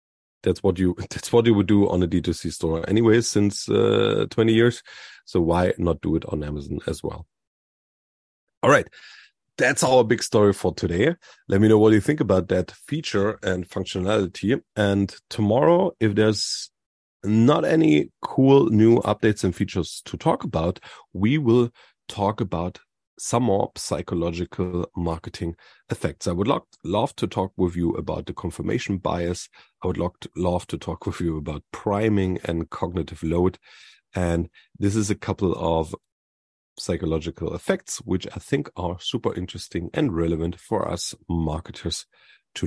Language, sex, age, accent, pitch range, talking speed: English, male, 40-59, German, 85-110 Hz, 155 wpm